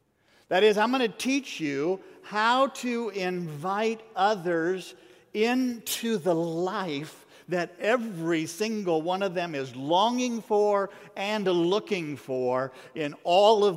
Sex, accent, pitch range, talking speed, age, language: male, American, 130-185 Hz, 125 wpm, 50-69, English